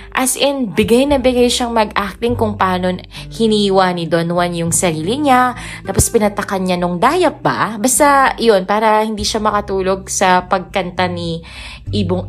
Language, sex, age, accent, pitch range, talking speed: Filipino, female, 20-39, native, 175-235 Hz, 155 wpm